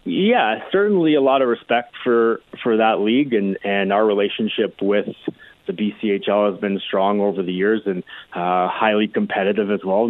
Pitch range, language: 100-115 Hz, English